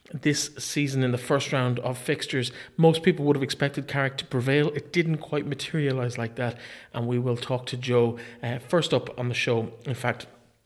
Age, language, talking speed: 30-49, English, 205 wpm